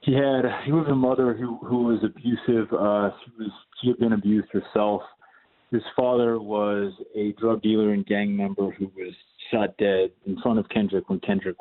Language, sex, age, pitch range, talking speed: English, male, 30-49, 100-135 Hz, 190 wpm